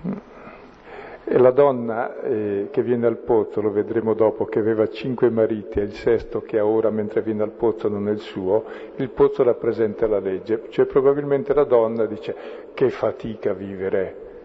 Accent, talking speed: native, 165 wpm